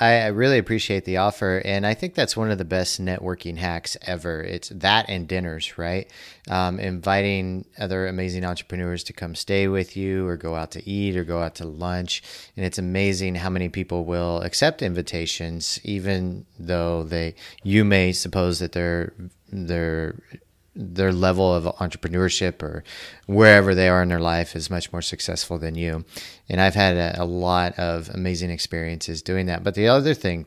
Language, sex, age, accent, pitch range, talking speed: English, male, 30-49, American, 85-95 Hz, 180 wpm